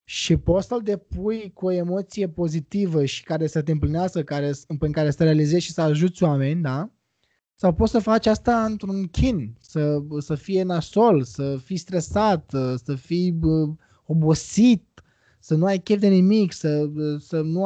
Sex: male